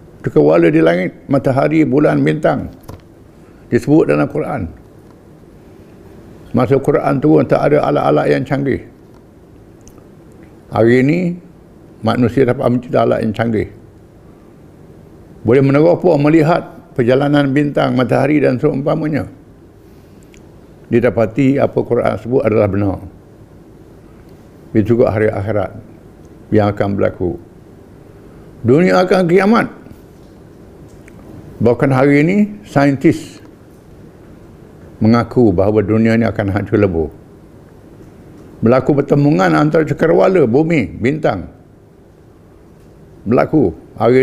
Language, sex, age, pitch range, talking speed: English, male, 60-79, 105-145 Hz, 90 wpm